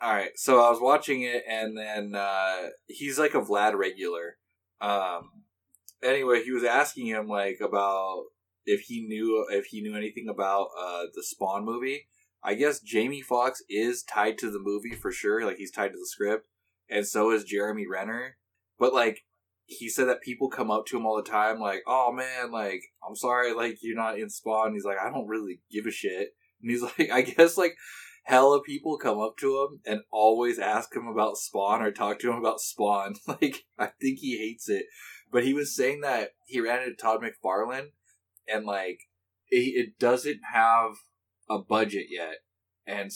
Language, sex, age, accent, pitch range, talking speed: English, male, 20-39, American, 100-125 Hz, 190 wpm